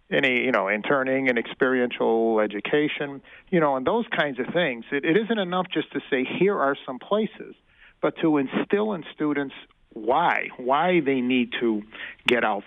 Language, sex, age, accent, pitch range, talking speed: English, male, 50-69, American, 125-180 Hz, 175 wpm